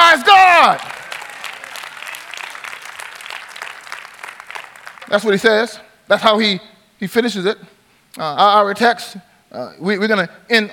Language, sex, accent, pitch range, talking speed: English, male, American, 195-240 Hz, 110 wpm